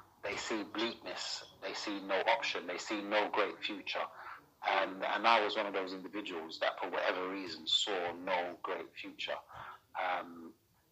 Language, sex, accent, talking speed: English, male, British, 160 wpm